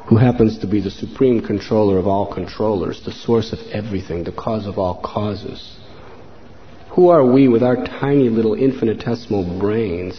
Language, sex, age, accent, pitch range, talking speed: English, male, 40-59, American, 100-125 Hz, 165 wpm